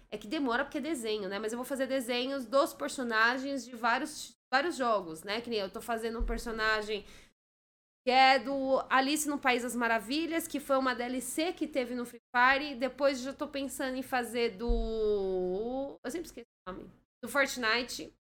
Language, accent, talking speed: Portuguese, Brazilian, 200 wpm